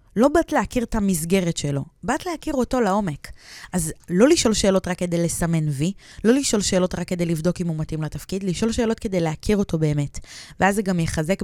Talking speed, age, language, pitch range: 200 wpm, 20-39, Hebrew, 160-200 Hz